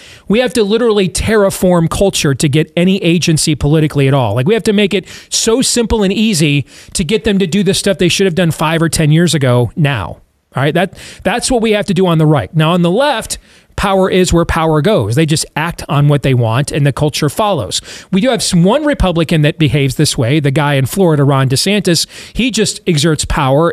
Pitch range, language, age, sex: 150-195 Hz, English, 40-59, male